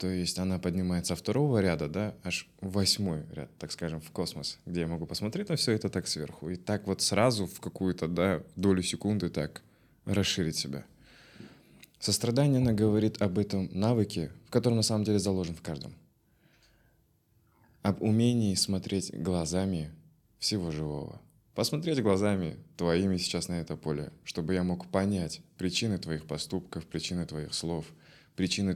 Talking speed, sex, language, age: 150 wpm, male, Russian, 20-39